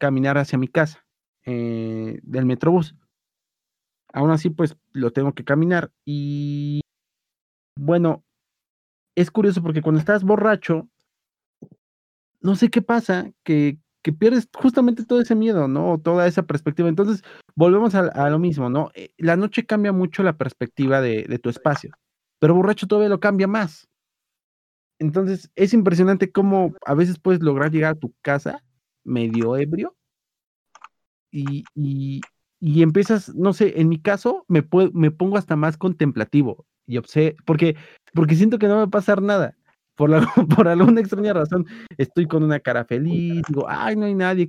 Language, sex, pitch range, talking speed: Spanish, male, 145-190 Hz, 160 wpm